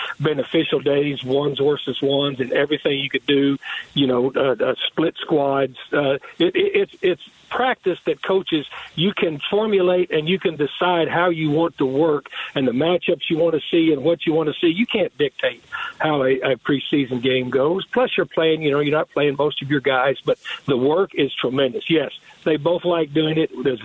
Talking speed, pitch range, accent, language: 200 wpm, 145-175 Hz, American, English